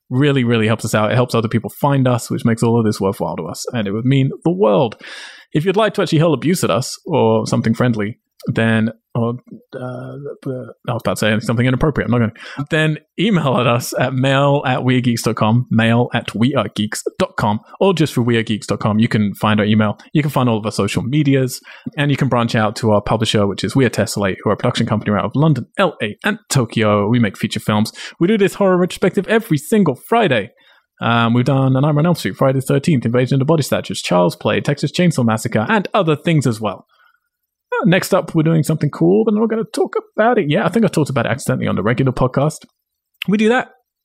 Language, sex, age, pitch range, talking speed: English, male, 30-49, 110-155 Hz, 225 wpm